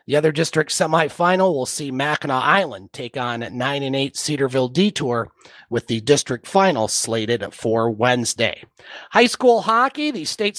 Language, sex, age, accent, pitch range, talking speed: English, male, 30-49, American, 140-200 Hz, 160 wpm